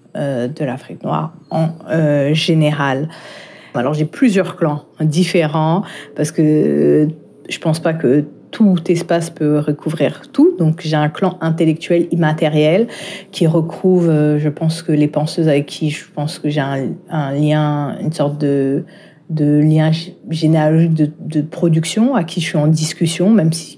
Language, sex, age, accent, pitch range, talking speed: French, female, 40-59, French, 150-170 Hz, 160 wpm